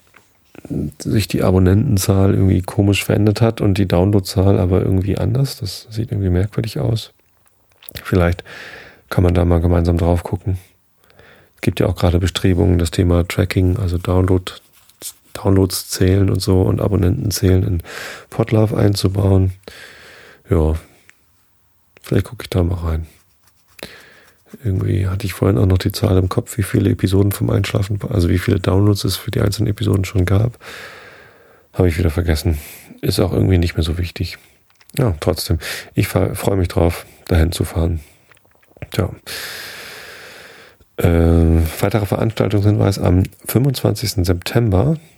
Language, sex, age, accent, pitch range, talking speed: German, male, 30-49, German, 90-105 Hz, 140 wpm